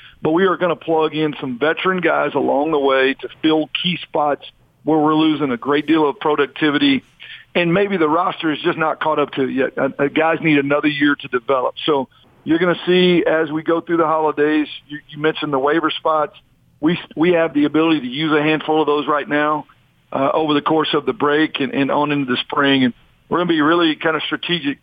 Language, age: English, 50-69